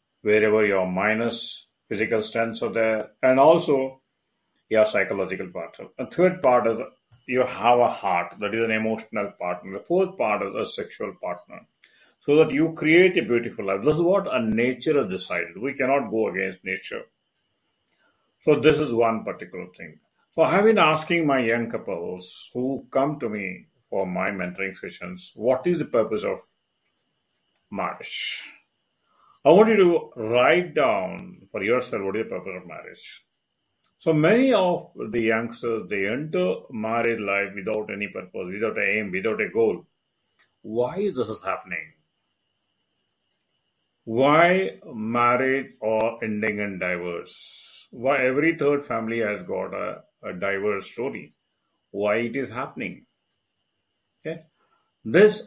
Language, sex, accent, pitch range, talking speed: English, male, Indian, 110-155 Hz, 150 wpm